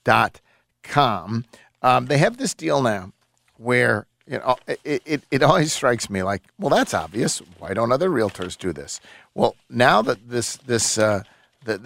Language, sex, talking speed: English, male, 165 wpm